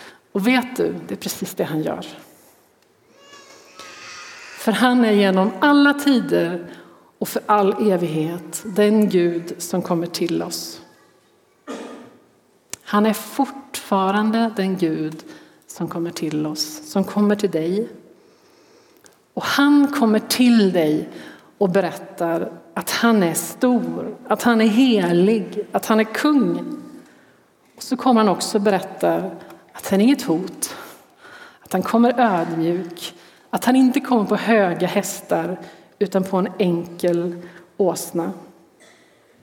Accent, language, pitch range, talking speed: native, Swedish, 175-240 Hz, 130 wpm